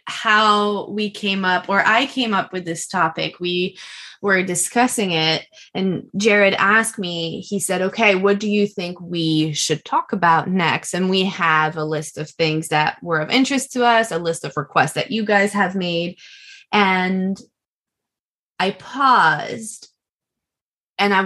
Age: 20-39